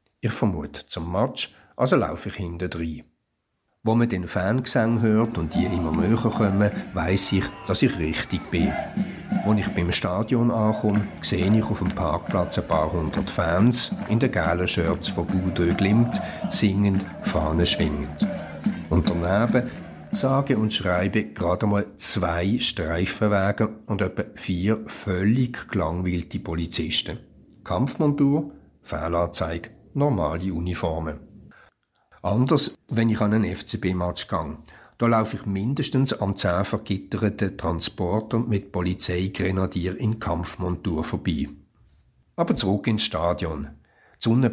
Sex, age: male, 50-69